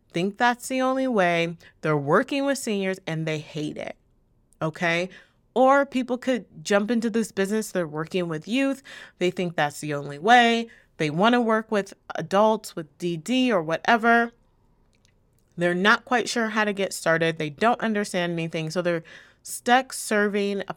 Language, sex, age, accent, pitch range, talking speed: English, female, 30-49, American, 165-215 Hz, 165 wpm